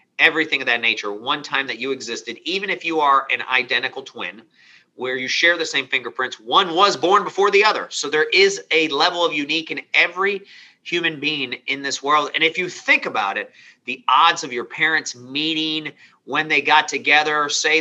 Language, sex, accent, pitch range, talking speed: English, male, American, 145-200 Hz, 200 wpm